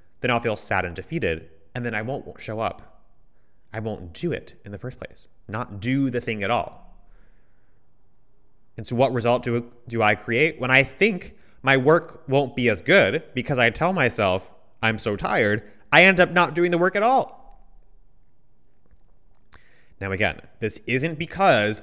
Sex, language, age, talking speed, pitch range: male, English, 30-49, 175 wpm, 100-135 Hz